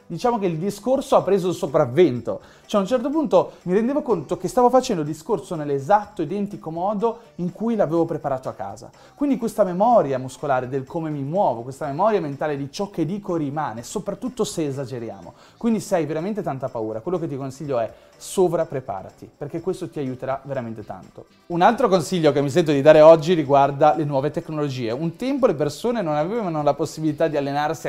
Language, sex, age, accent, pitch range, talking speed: Italian, male, 30-49, native, 145-210 Hz, 195 wpm